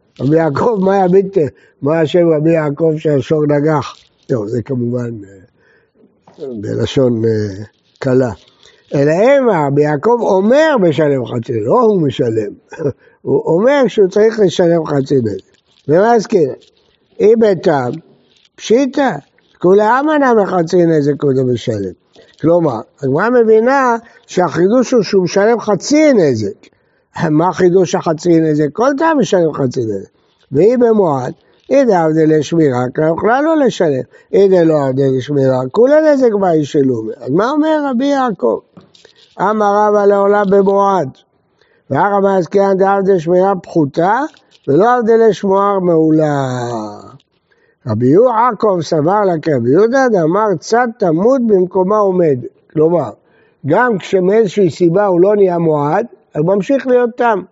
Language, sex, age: Hebrew, male, 60-79